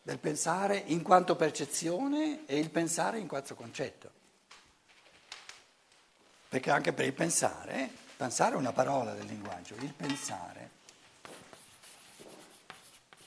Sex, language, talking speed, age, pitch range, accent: male, Italian, 110 wpm, 60-79, 155-215 Hz, native